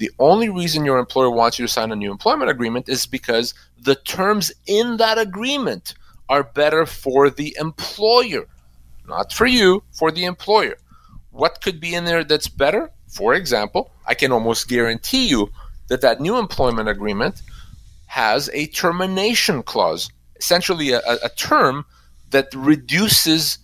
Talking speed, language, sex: 150 wpm, English, male